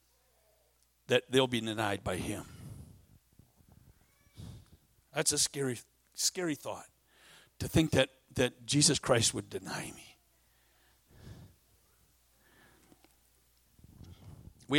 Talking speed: 85 wpm